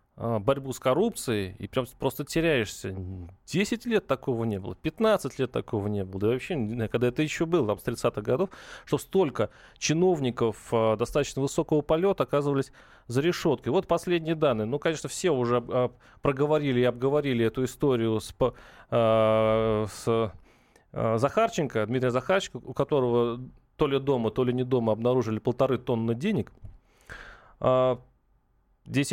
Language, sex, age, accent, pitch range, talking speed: Russian, male, 30-49, native, 120-160 Hz, 140 wpm